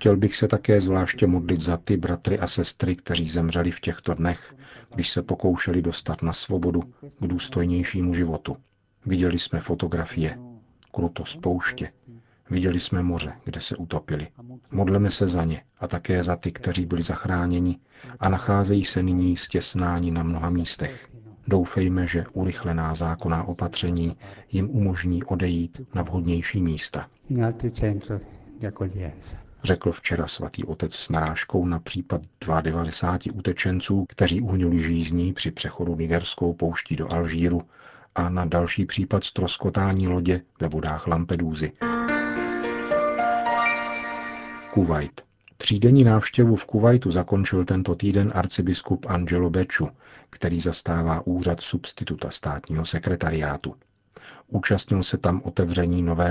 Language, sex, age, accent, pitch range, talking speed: Czech, male, 40-59, native, 85-100 Hz, 125 wpm